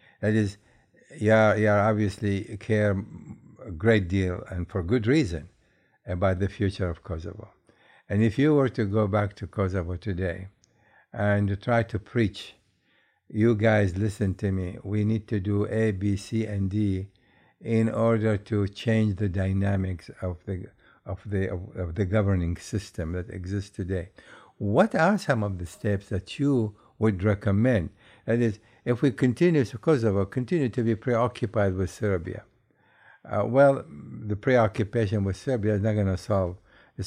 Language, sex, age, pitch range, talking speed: English, male, 60-79, 95-120 Hz, 165 wpm